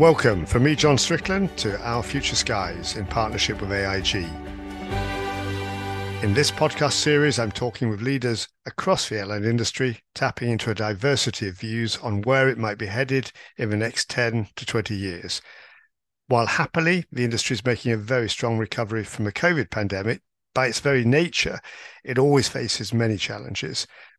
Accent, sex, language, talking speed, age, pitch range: British, male, English, 165 wpm, 50-69, 105-130 Hz